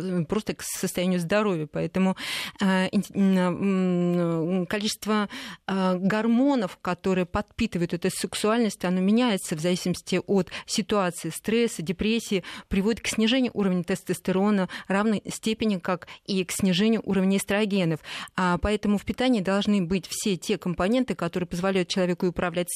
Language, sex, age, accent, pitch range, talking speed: Russian, female, 20-39, native, 180-215 Hz, 125 wpm